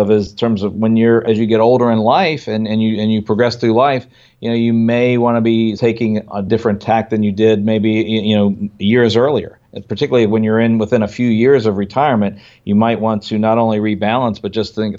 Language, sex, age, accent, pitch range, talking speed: English, male, 40-59, American, 105-120 Hz, 245 wpm